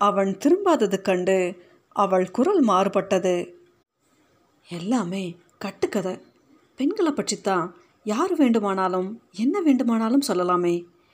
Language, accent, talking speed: Tamil, native, 80 wpm